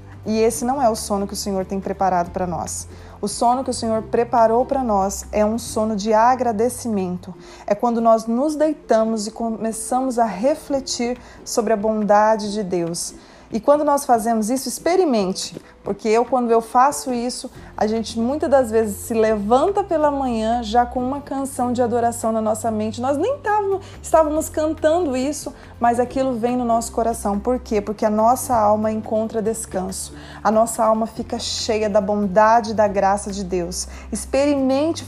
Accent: Brazilian